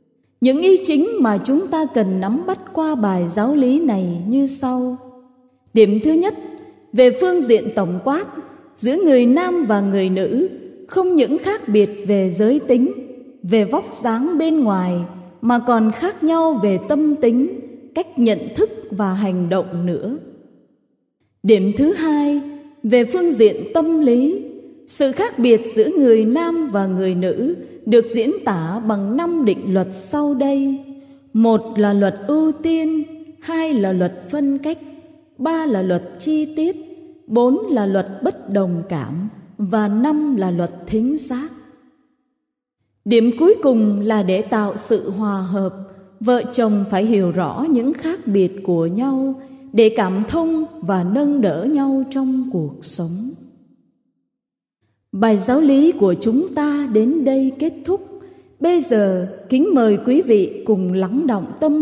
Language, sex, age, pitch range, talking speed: Vietnamese, female, 20-39, 205-300 Hz, 155 wpm